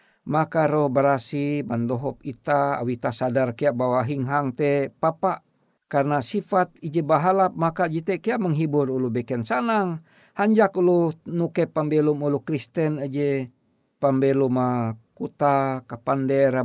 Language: Indonesian